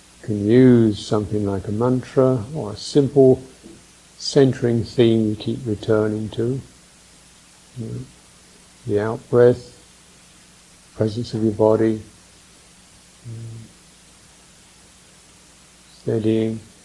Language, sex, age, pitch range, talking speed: English, male, 60-79, 100-130 Hz, 95 wpm